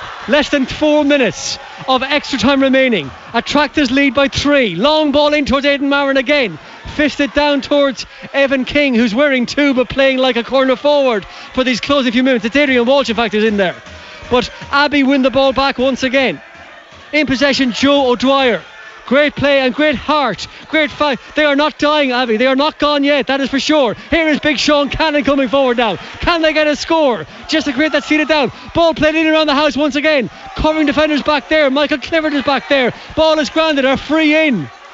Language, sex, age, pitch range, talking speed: English, male, 30-49, 245-295 Hz, 210 wpm